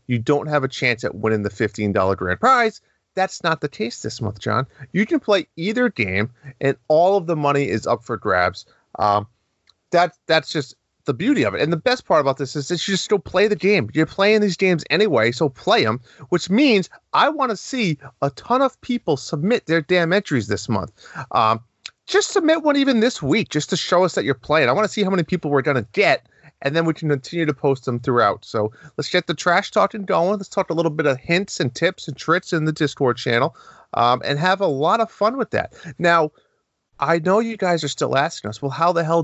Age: 30-49